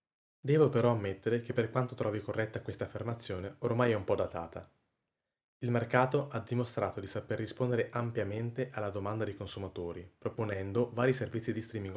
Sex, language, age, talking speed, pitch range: male, Italian, 20-39, 160 wpm, 100-125 Hz